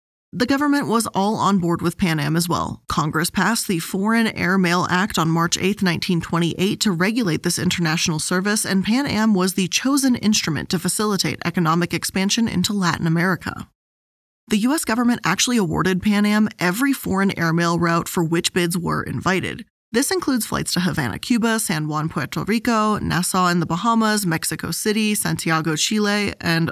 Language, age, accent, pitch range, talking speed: English, 20-39, American, 170-215 Hz, 170 wpm